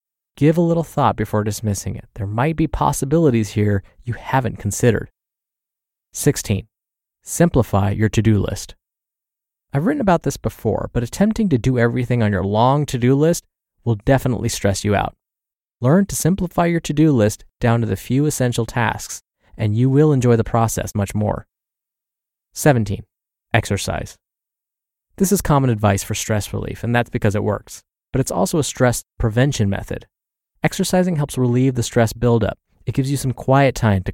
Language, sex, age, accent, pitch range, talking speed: English, male, 20-39, American, 105-135 Hz, 165 wpm